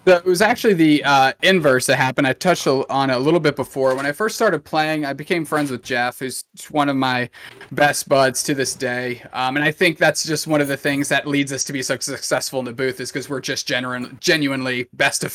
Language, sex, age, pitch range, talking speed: English, male, 20-39, 130-155 Hz, 240 wpm